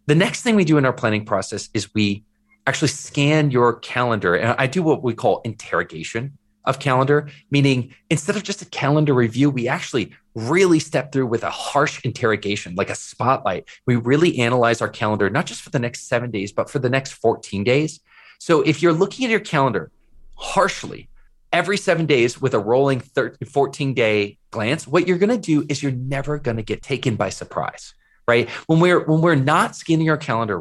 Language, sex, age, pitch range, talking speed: English, male, 30-49, 115-155 Hz, 195 wpm